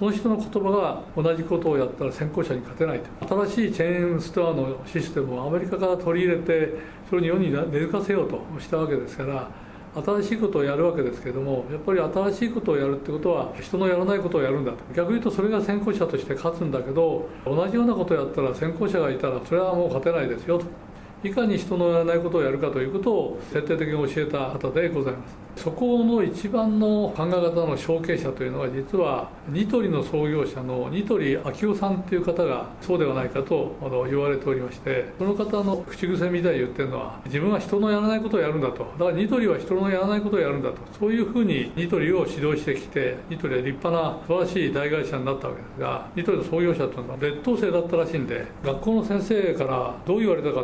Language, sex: Japanese, male